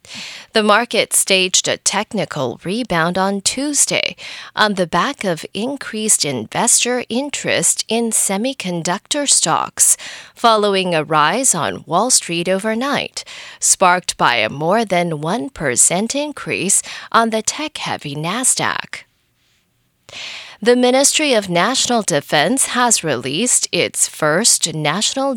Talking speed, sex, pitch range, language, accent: 110 wpm, female, 180-255 Hz, English, American